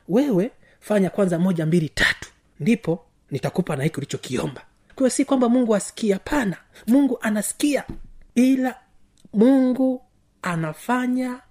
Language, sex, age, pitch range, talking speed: Swahili, male, 30-49, 165-225 Hz, 115 wpm